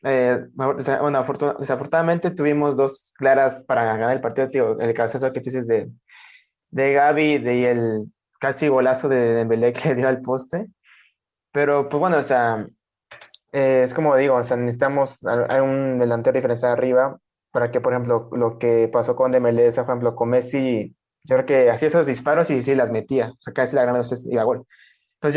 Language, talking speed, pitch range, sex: Spanish, 200 wpm, 120-135 Hz, male